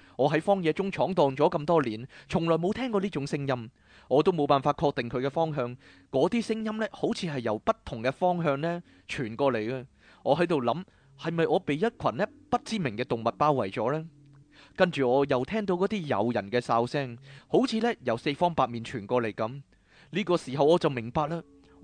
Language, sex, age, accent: Chinese, male, 20-39, native